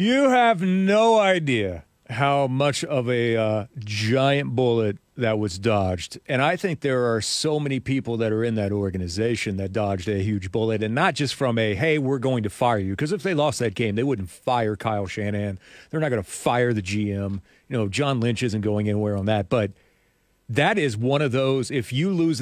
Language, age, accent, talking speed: English, 40-59, American, 210 wpm